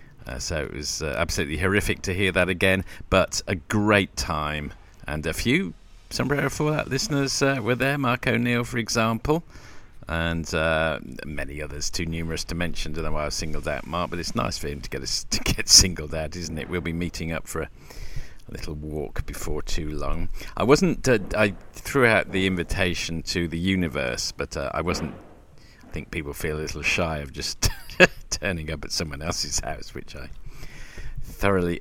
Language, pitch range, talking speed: English, 75-95 Hz, 190 wpm